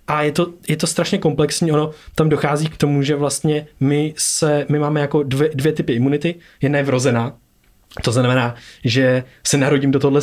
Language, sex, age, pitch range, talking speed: Czech, male, 20-39, 130-160 Hz, 195 wpm